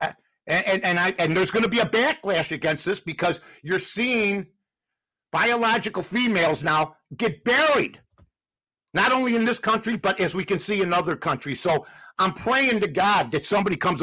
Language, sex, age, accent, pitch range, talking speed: English, male, 50-69, American, 175-235 Hz, 180 wpm